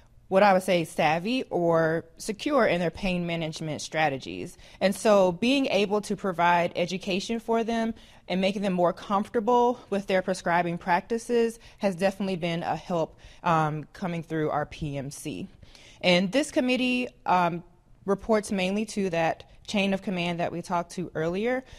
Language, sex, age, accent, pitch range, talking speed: English, female, 20-39, American, 175-220 Hz, 155 wpm